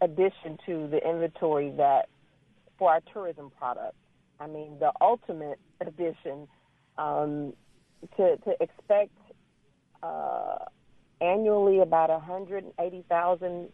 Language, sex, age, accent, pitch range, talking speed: English, female, 40-59, American, 155-190 Hz, 95 wpm